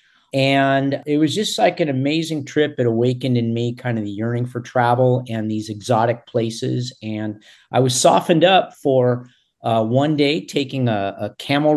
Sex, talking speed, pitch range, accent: male, 180 wpm, 115-140 Hz, American